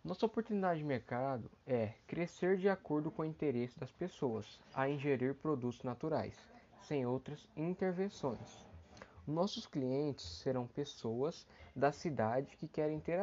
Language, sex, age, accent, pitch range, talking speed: Portuguese, male, 10-29, Brazilian, 125-155 Hz, 130 wpm